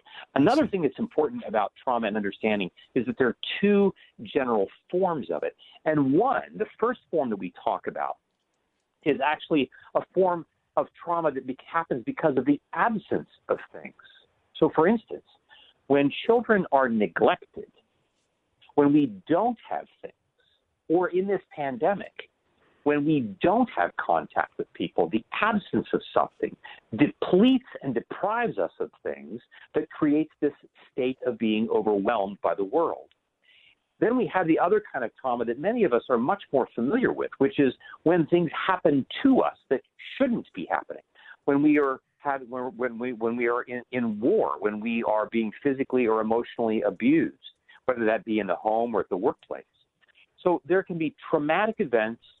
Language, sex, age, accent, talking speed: English, male, 50-69, American, 170 wpm